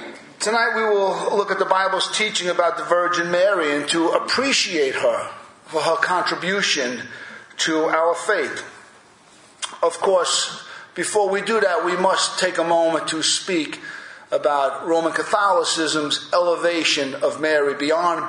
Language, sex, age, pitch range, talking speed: English, male, 50-69, 160-220 Hz, 140 wpm